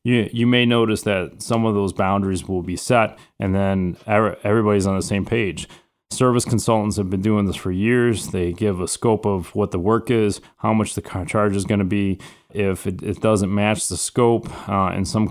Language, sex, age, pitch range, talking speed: English, male, 30-49, 95-110 Hz, 210 wpm